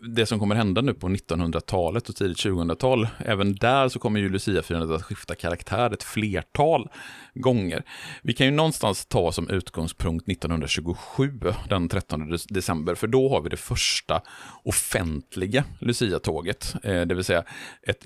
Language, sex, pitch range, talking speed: Swedish, male, 85-115 Hz, 150 wpm